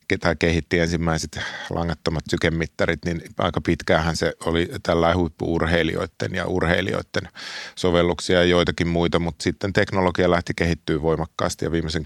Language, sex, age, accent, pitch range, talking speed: Finnish, male, 30-49, native, 80-90 Hz, 130 wpm